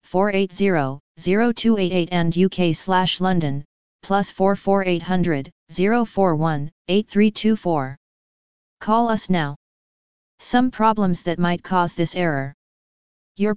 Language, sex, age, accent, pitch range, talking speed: English, female, 30-49, American, 160-195 Hz, 65 wpm